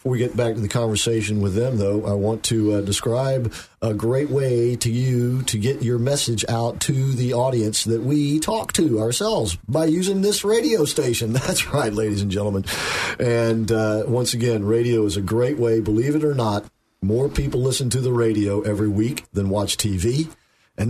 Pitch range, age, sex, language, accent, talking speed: 105-125 Hz, 50-69, male, English, American, 190 wpm